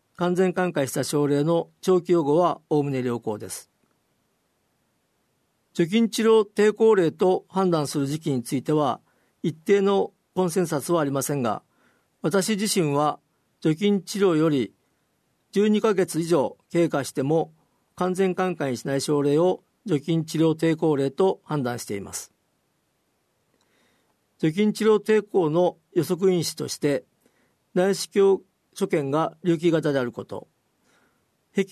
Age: 50-69